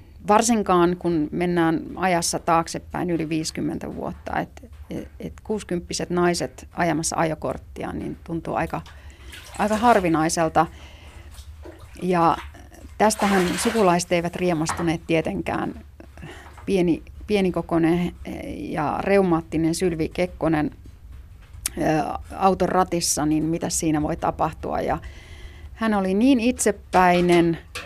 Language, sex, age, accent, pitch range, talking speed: Finnish, female, 30-49, native, 150-185 Hz, 95 wpm